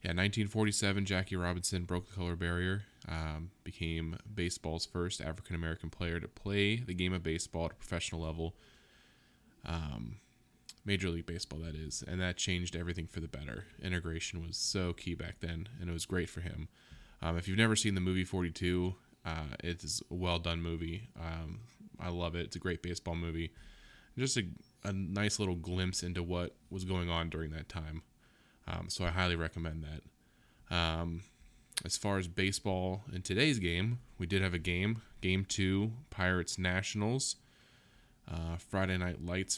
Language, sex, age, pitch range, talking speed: English, male, 20-39, 85-100 Hz, 170 wpm